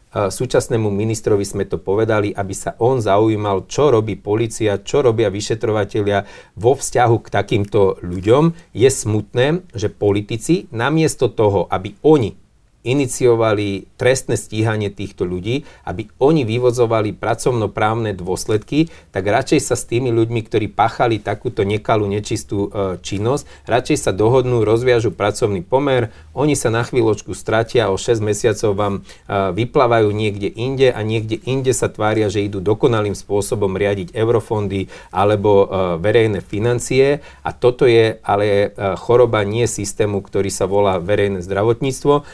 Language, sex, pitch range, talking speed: Slovak, male, 100-120 Hz, 135 wpm